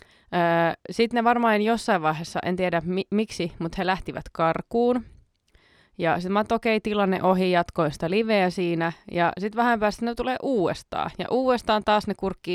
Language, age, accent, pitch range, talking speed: Finnish, 20-39, native, 175-225 Hz, 170 wpm